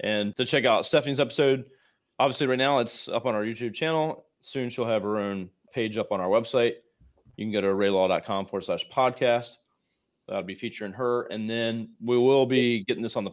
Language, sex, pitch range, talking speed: English, male, 100-125 Hz, 205 wpm